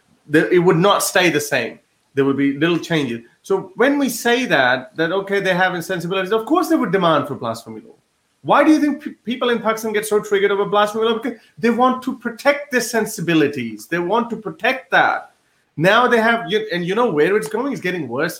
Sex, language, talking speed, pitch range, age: male, English, 220 wpm, 170-235 Hz, 30-49